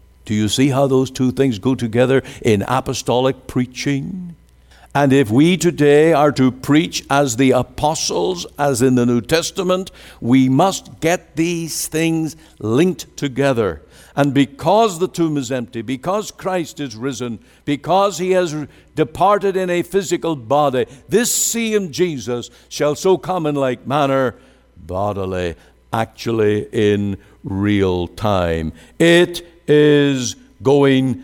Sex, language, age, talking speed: male, English, 60-79, 135 wpm